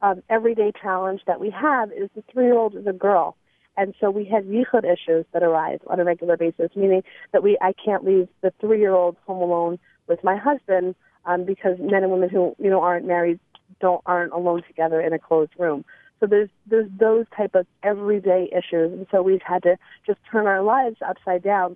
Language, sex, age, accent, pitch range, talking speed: English, female, 30-49, American, 175-205 Hz, 205 wpm